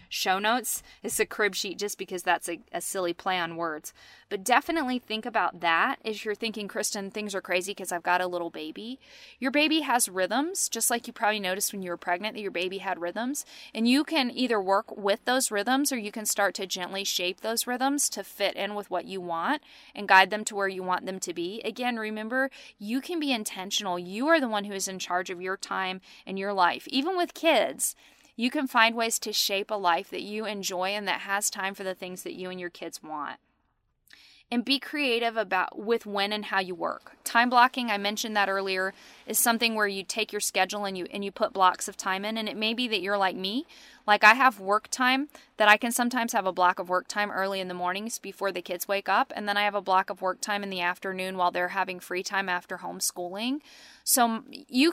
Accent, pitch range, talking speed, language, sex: American, 190-240 Hz, 235 wpm, English, female